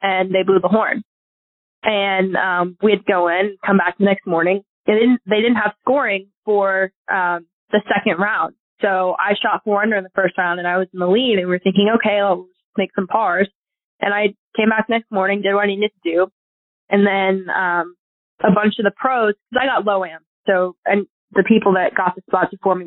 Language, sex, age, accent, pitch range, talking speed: English, female, 20-39, American, 185-215 Hz, 220 wpm